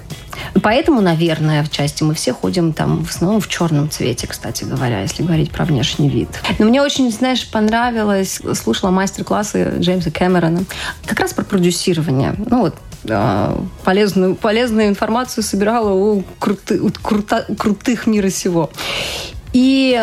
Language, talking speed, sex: Russian, 145 wpm, female